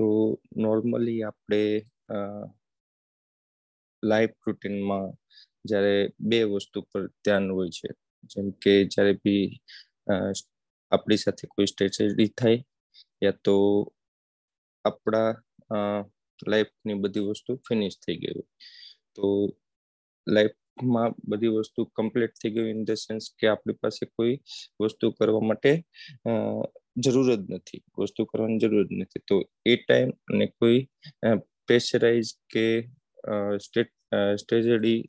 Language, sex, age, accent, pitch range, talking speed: English, male, 20-39, Indian, 100-115 Hz, 85 wpm